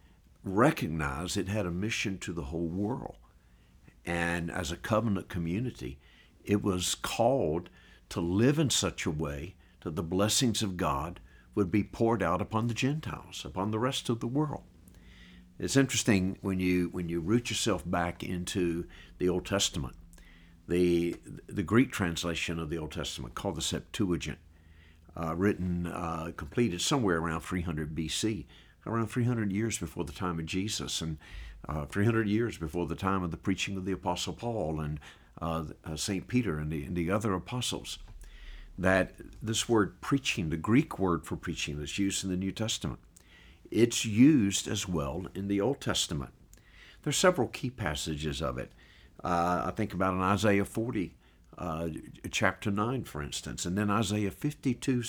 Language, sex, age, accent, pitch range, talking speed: English, male, 60-79, American, 85-105 Hz, 165 wpm